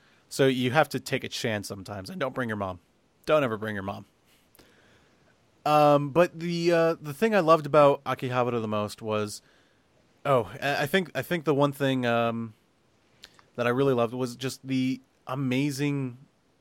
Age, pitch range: 30-49, 115-145 Hz